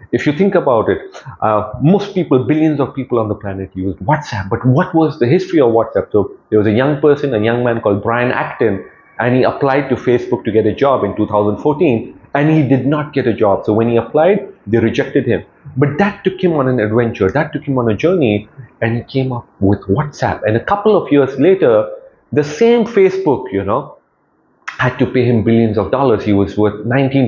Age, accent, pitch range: 30-49, Indian, 115-165 Hz